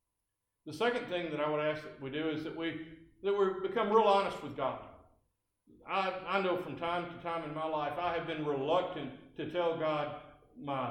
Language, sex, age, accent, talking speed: English, male, 60-79, American, 210 wpm